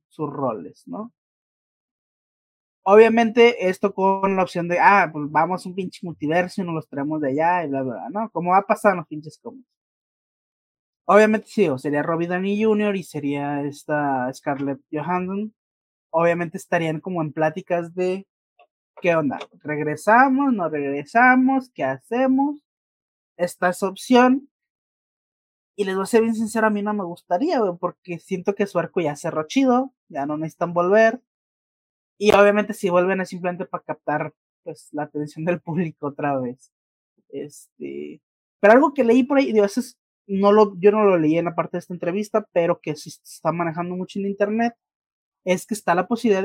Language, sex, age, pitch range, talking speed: Spanish, male, 30-49, 155-210 Hz, 175 wpm